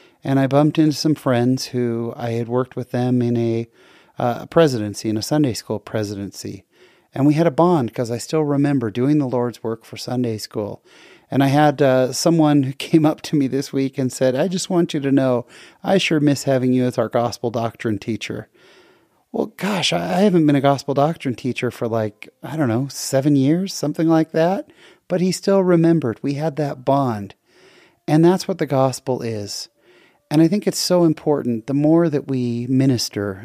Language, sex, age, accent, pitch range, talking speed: English, male, 30-49, American, 115-150 Hz, 200 wpm